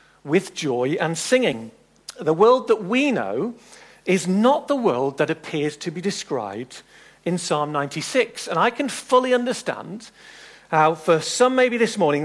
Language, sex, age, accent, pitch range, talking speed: English, male, 50-69, British, 155-220 Hz, 155 wpm